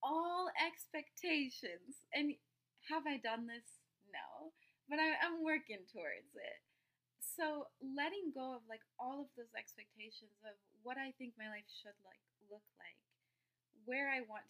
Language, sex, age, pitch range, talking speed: English, female, 20-39, 200-270 Hz, 145 wpm